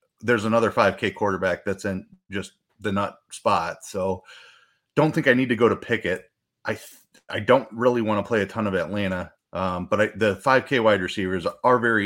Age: 30-49